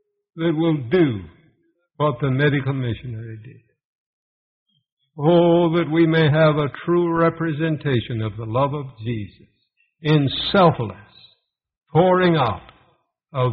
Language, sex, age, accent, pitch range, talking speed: English, male, 60-79, American, 115-160 Hz, 115 wpm